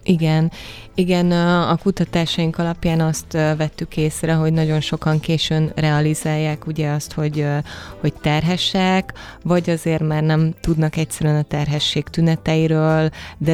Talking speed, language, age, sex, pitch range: 125 wpm, Hungarian, 20-39, female, 150-160 Hz